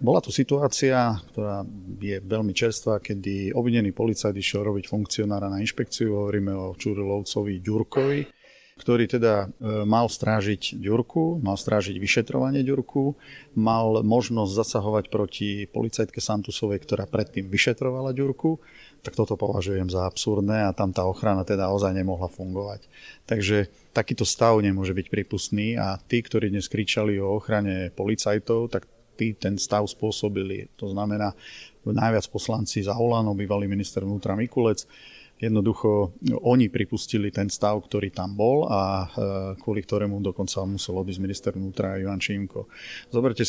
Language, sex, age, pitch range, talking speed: Slovak, male, 30-49, 100-115 Hz, 135 wpm